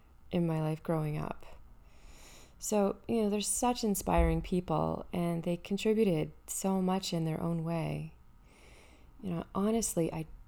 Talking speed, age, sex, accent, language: 145 wpm, 20-39, female, American, English